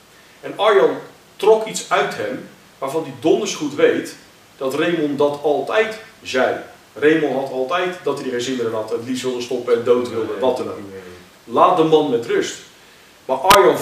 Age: 40-59